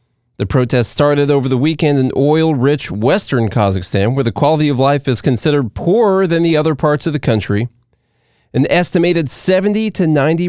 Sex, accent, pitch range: male, American, 115-160 Hz